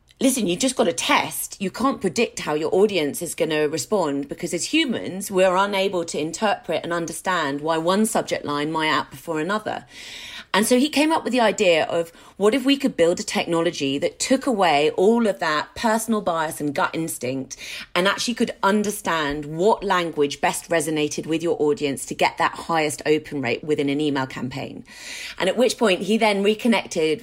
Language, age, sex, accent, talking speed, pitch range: English, 40-59, female, British, 195 wpm, 155-215 Hz